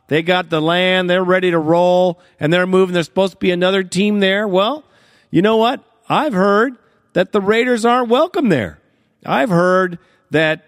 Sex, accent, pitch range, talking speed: male, American, 155-195 Hz, 185 wpm